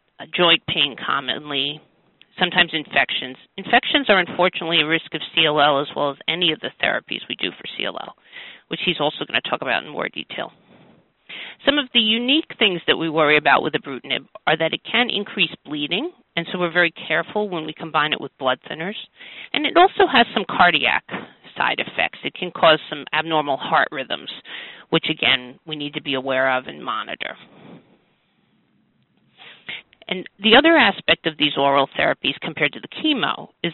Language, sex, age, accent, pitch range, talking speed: English, female, 40-59, American, 155-205 Hz, 180 wpm